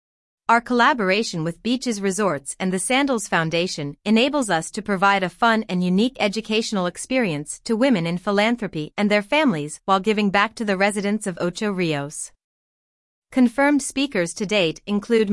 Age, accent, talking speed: 30-49, American, 155 wpm